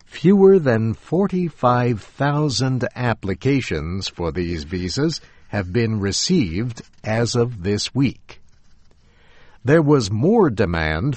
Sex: male